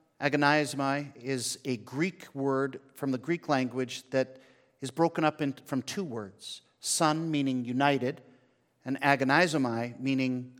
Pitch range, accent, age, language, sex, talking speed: 120-150 Hz, American, 50-69, English, male, 130 wpm